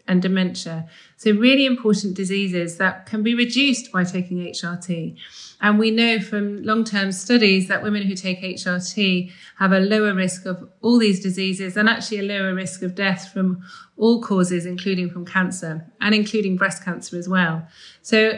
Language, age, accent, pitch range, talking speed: English, 30-49, British, 185-215 Hz, 170 wpm